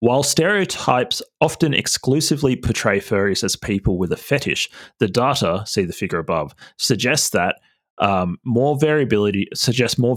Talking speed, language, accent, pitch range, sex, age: 140 wpm, English, Australian, 95-125 Hz, male, 30-49